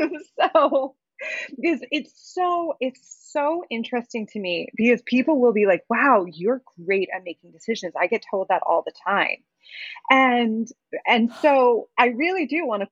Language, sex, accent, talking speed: English, female, American, 160 wpm